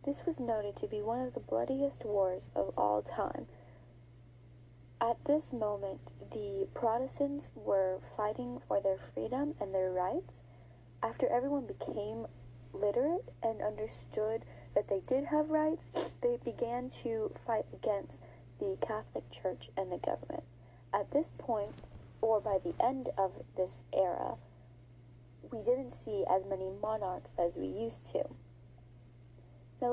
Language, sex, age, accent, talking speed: English, female, 30-49, American, 140 wpm